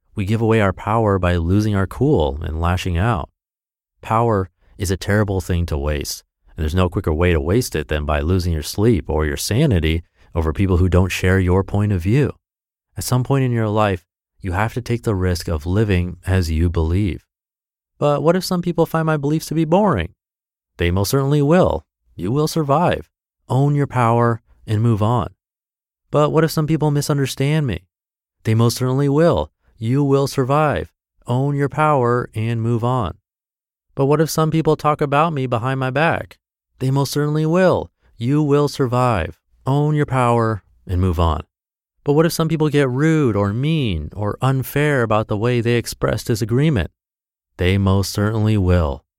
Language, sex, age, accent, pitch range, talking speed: English, male, 30-49, American, 90-135 Hz, 185 wpm